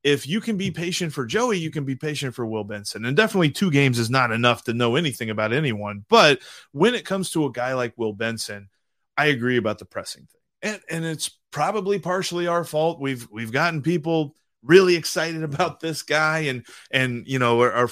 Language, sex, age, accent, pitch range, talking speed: English, male, 30-49, American, 120-165 Hz, 215 wpm